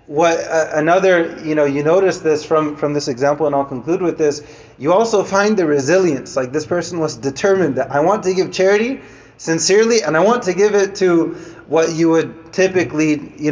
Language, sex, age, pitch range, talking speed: English, male, 30-49, 145-175 Hz, 200 wpm